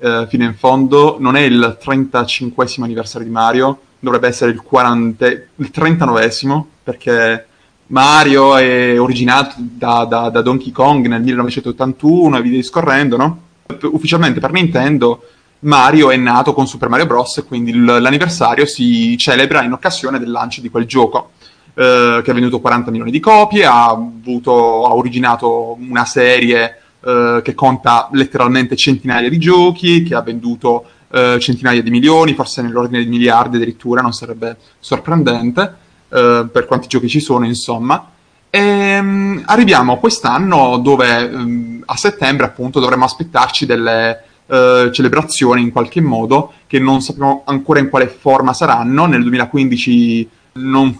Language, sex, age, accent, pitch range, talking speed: Italian, male, 20-39, native, 120-140 Hz, 145 wpm